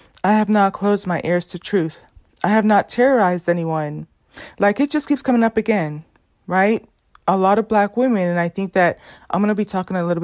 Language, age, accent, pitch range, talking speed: English, 30-49, American, 175-215 Hz, 215 wpm